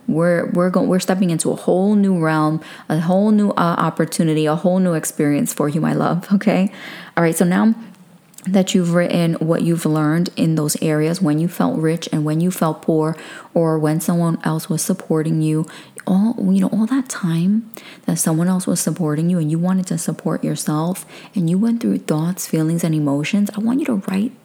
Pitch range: 165-205 Hz